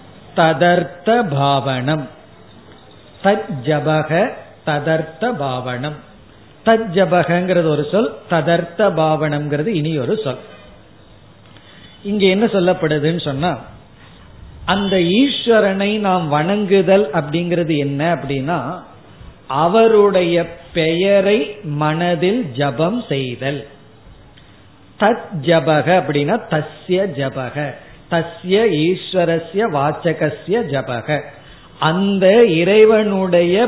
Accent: native